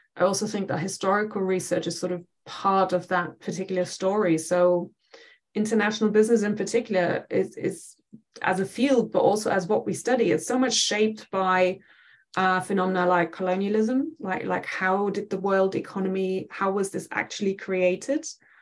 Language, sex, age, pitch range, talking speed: English, female, 20-39, 180-210 Hz, 165 wpm